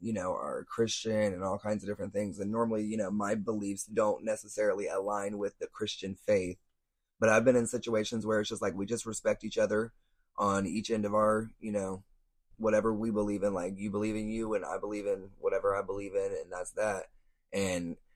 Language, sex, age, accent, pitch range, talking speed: English, male, 20-39, American, 100-110 Hz, 215 wpm